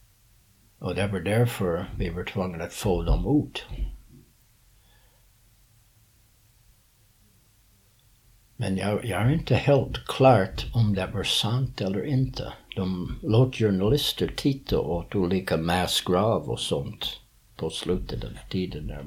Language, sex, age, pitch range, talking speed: Swedish, male, 60-79, 95-115 Hz, 120 wpm